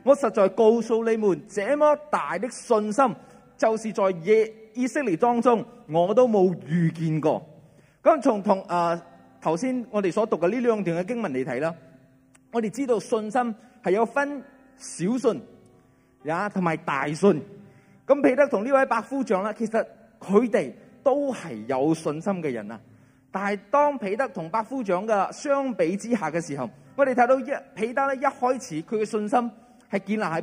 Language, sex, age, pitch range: Chinese, male, 30-49, 165-240 Hz